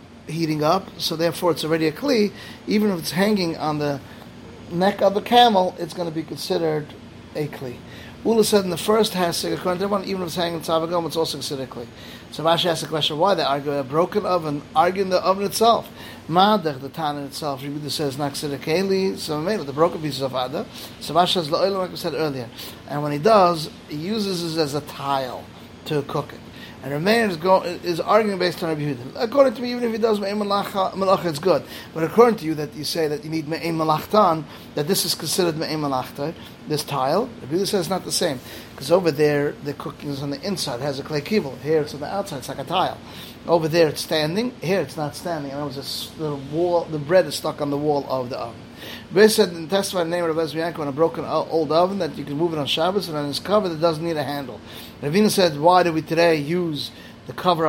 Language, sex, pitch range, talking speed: English, male, 145-180 Hz, 230 wpm